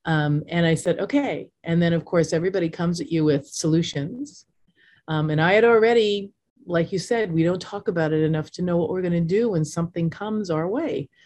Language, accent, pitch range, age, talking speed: English, American, 150-180 Hz, 40-59, 220 wpm